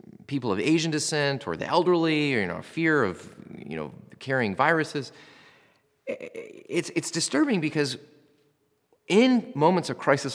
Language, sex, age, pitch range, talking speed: English, male, 30-49, 105-145 Hz, 140 wpm